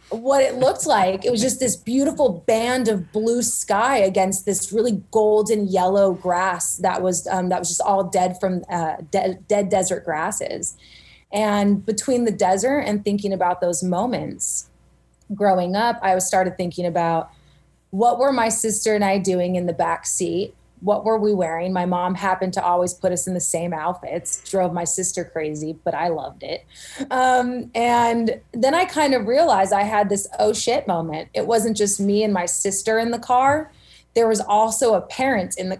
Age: 20-39